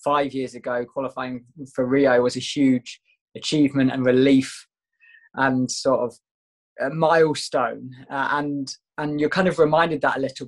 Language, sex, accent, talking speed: English, male, British, 155 wpm